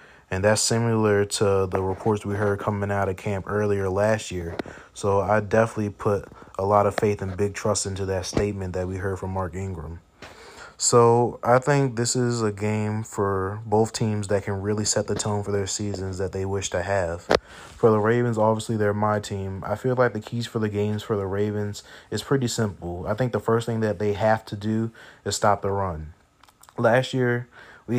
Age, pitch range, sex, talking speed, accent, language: 20-39, 100-110 Hz, male, 210 wpm, American, English